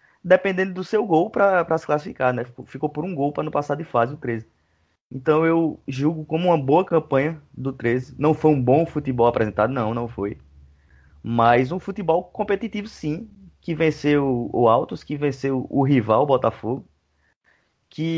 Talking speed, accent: 185 wpm, Brazilian